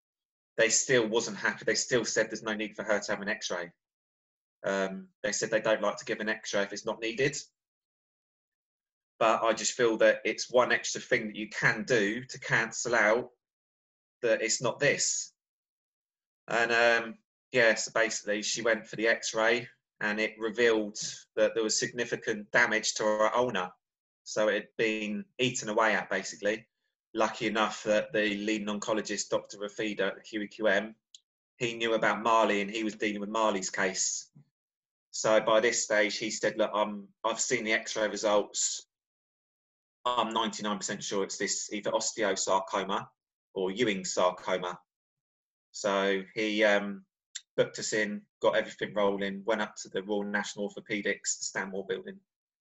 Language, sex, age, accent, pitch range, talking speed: English, male, 20-39, British, 100-115 Hz, 160 wpm